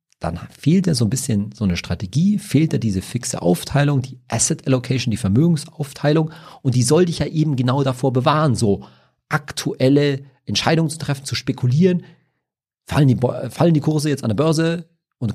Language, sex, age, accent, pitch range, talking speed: German, male, 40-59, German, 105-145 Hz, 170 wpm